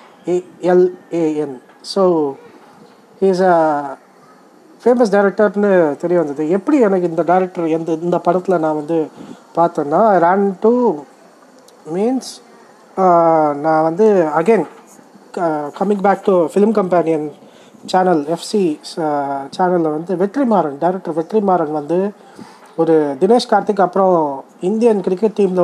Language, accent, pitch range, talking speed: Tamil, native, 160-210 Hz, 115 wpm